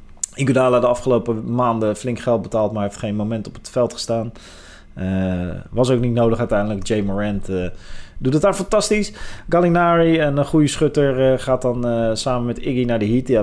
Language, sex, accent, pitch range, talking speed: Dutch, male, Dutch, 100-150 Hz, 195 wpm